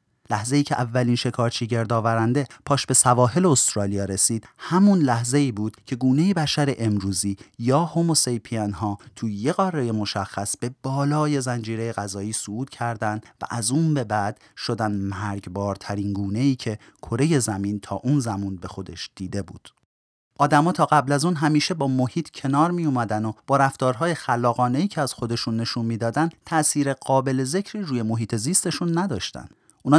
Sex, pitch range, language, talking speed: male, 105-145 Hz, Persian, 155 wpm